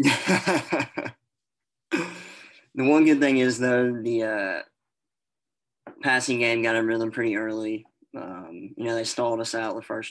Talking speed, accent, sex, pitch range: 140 wpm, American, male, 110-125 Hz